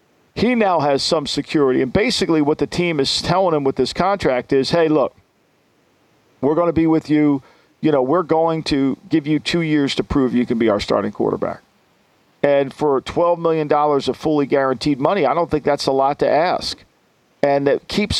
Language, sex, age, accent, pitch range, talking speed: English, male, 50-69, American, 140-195 Hz, 200 wpm